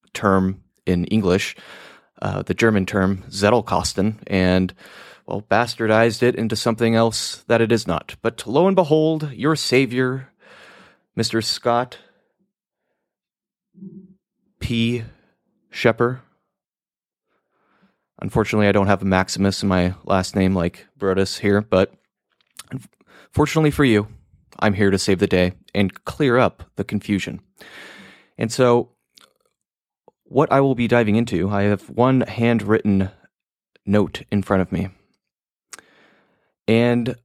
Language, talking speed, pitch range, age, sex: English, 120 wpm, 95-120 Hz, 30-49, male